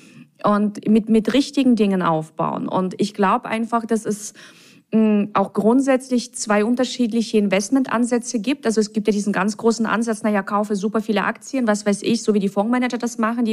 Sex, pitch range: female, 200-240 Hz